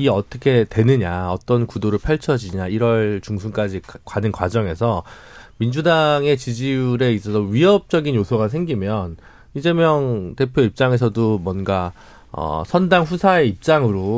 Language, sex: Korean, male